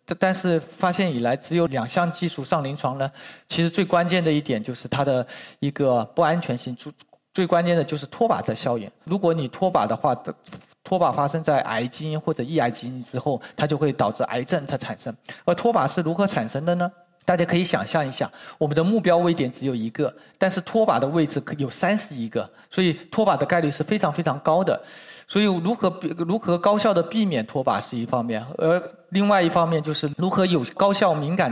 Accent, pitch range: native, 135-180 Hz